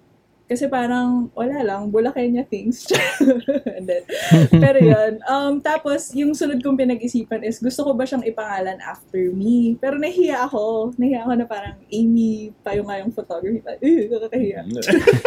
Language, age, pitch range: Filipino, 20-39, 215-270 Hz